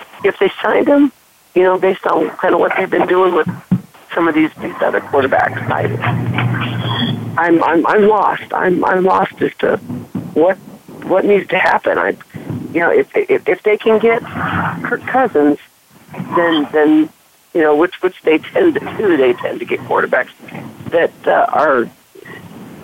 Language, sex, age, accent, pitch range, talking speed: English, male, 50-69, American, 165-220 Hz, 170 wpm